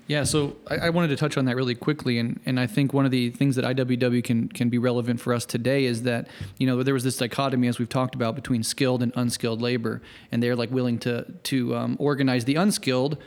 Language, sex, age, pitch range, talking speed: English, male, 30-49, 125-145 Hz, 250 wpm